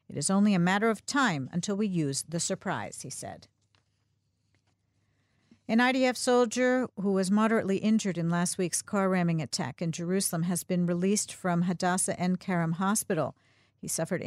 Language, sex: English, female